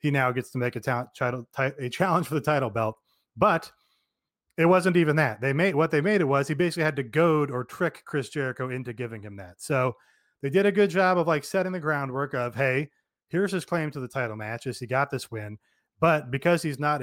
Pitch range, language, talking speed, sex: 130-170 Hz, English, 240 wpm, male